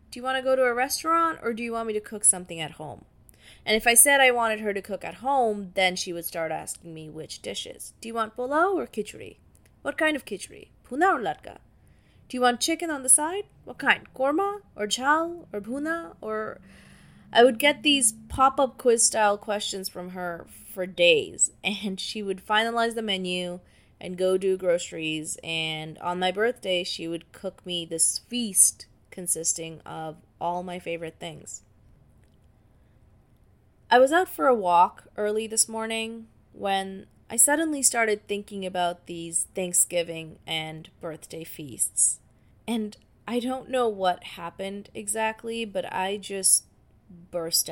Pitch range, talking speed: 170-230 Hz, 170 wpm